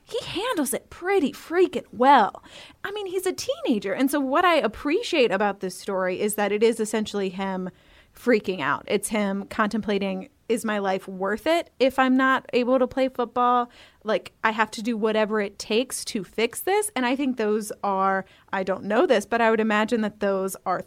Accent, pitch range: American, 200-275 Hz